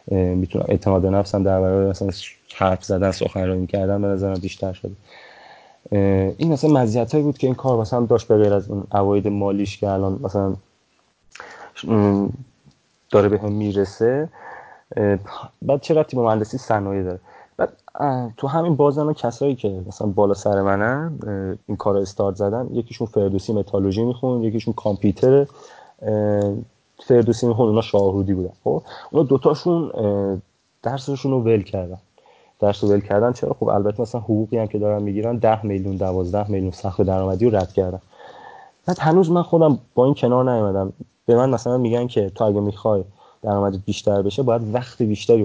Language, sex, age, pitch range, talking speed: Persian, male, 30-49, 100-120 Hz, 155 wpm